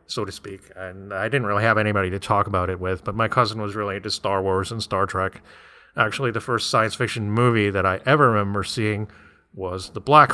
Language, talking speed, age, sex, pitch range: English, 225 wpm, 30-49, male, 95-120 Hz